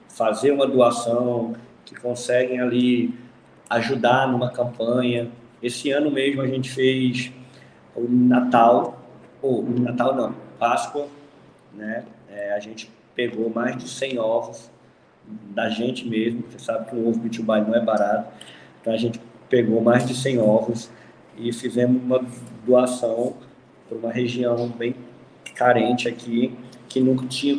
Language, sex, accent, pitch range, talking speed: Portuguese, male, Brazilian, 115-130 Hz, 135 wpm